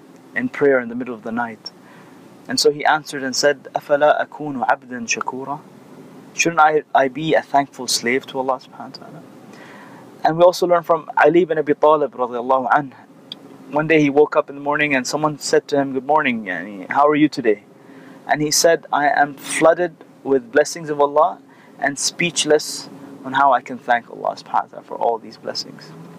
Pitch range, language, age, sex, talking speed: 135-155 Hz, English, 30-49, male, 180 wpm